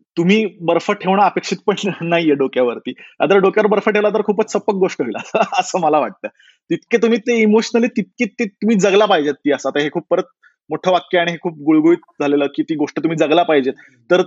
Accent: native